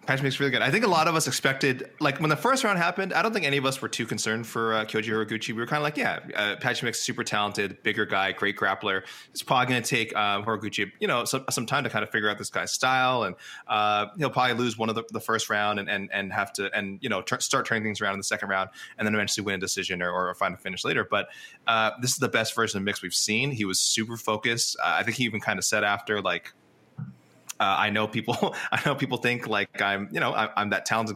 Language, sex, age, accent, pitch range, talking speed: English, male, 20-39, American, 105-125 Hz, 280 wpm